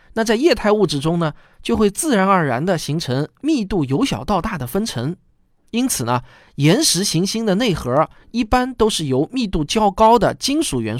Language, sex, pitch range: Chinese, male, 140-220 Hz